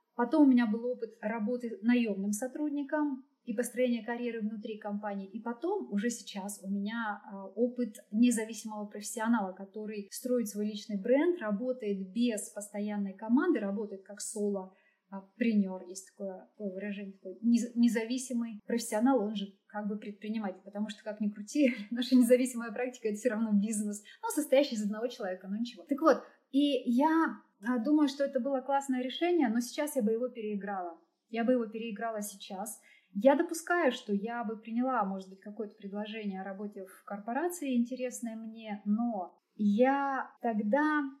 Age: 20-39